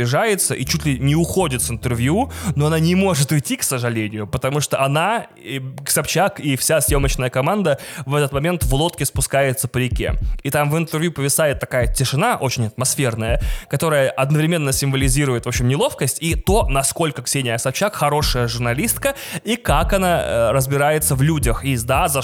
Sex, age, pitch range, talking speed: male, 20-39, 130-160 Hz, 165 wpm